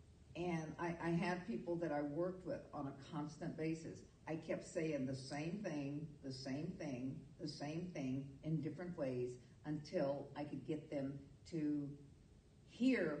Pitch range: 150-195 Hz